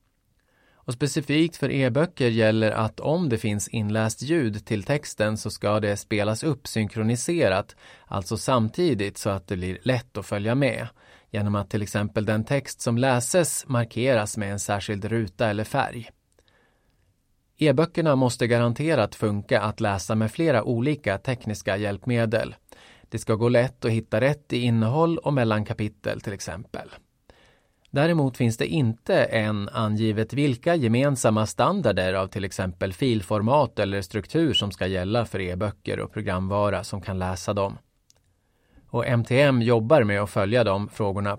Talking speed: 150 wpm